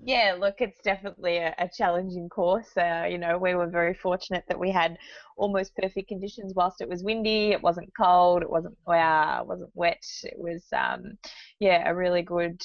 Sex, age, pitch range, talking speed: female, 20-39, 165-195 Hz, 195 wpm